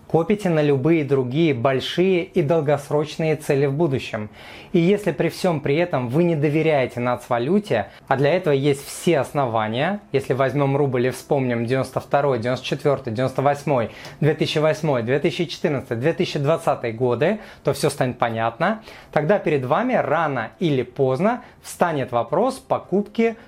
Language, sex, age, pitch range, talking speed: Russian, male, 30-49, 135-185 Hz, 130 wpm